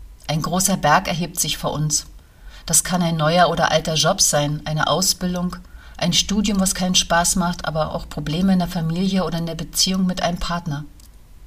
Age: 40-59